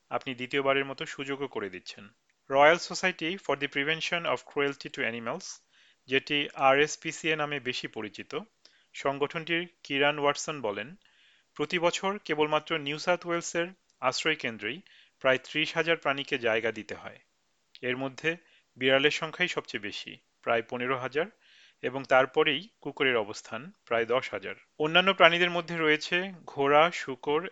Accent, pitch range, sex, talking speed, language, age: native, 135-165 Hz, male, 135 wpm, Bengali, 40-59